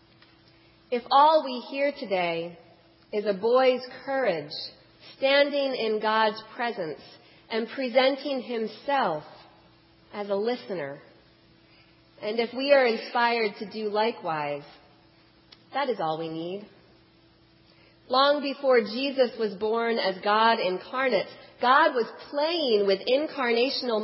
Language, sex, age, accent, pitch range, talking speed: English, female, 40-59, American, 190-260 Hz, 110 wpm